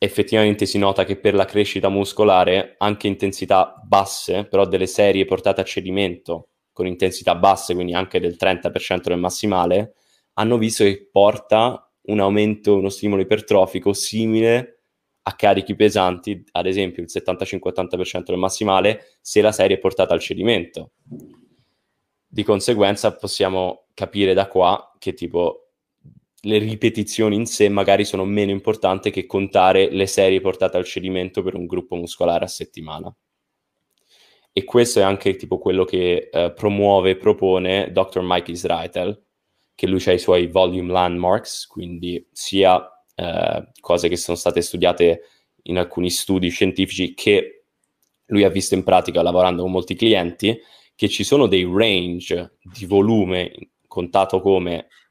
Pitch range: 90-105 Hz